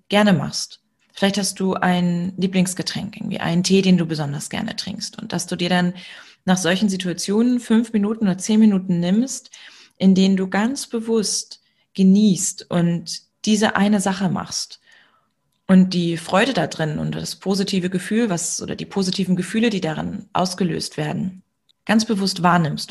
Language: German